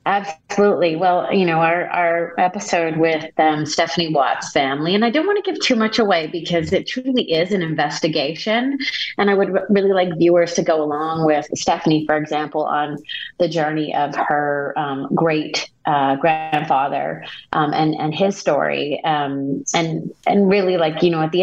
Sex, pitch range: female, 155-190 Hz